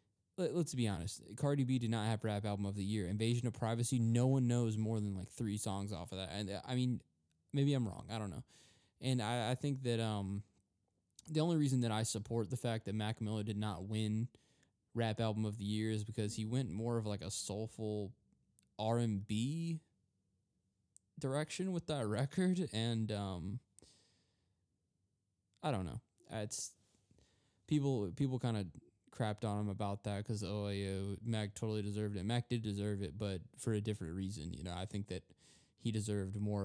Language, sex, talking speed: English, male, 185 wpm